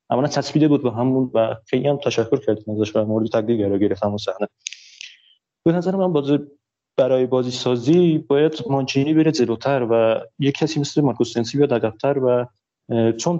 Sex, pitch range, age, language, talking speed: male, 115-145 Hz, 30-49, Persian, 170 wpm